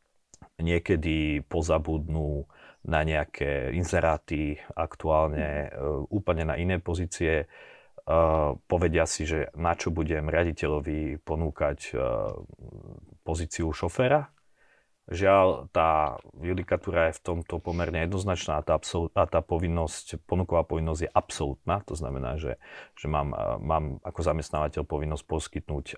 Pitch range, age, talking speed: 75-90 Hz, 40-59, 115 wpm